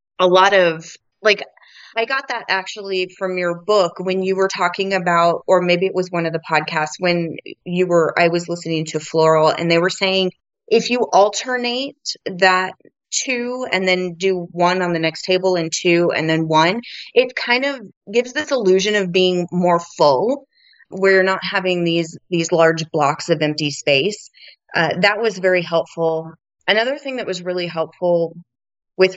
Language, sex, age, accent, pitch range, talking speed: English, female, 30-49, American, 170-200 Hz, 175 wpm